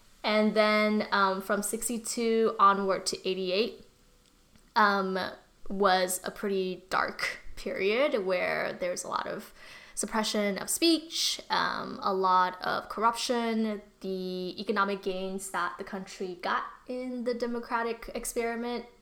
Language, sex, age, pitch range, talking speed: English, female, 10-29, 185-230 Hz, 120 wpm